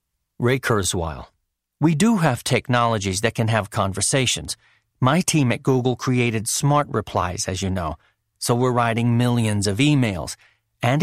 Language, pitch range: English, 105-140 Hz